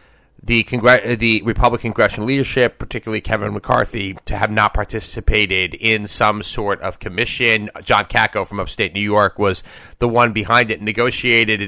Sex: male